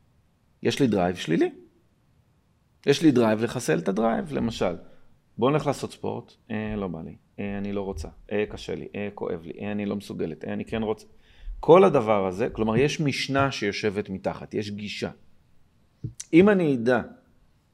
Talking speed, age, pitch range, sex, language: 170 wpm, 40-59, 100-125 Hz, male, Hebrew